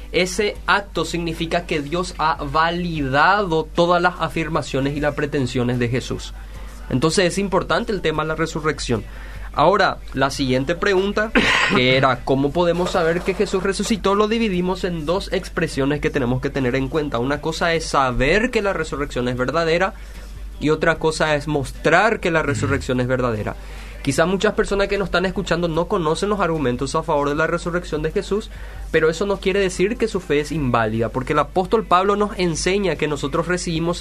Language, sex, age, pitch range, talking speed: Spanish, male, 20-39, 145-190 Hz, 180 wpm